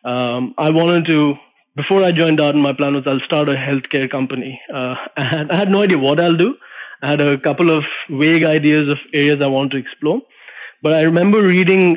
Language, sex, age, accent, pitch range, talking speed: English, male, 20-39, Indian, 140-155 Hz, 210 wpm